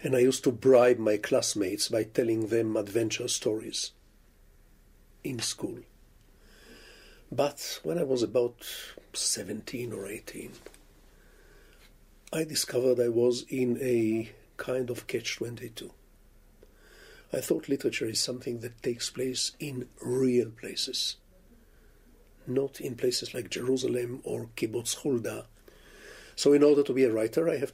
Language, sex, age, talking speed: English, male, 50-69, 130 wpm